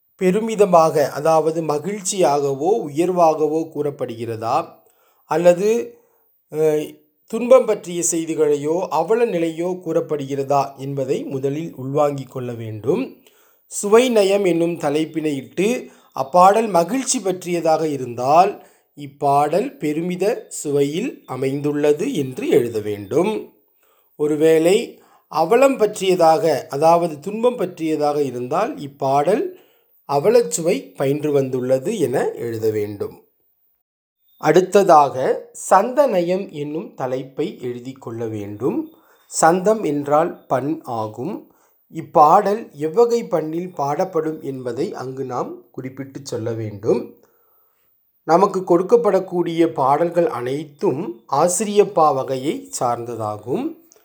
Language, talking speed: Tamil, 80 wpm